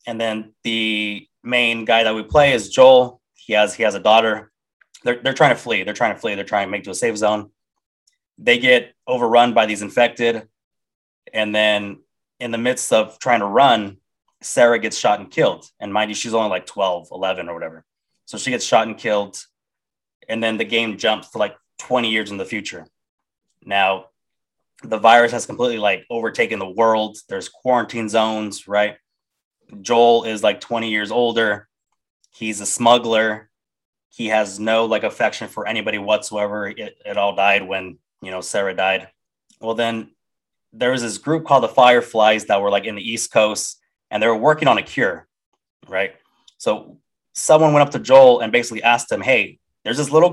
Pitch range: 105-120 Hz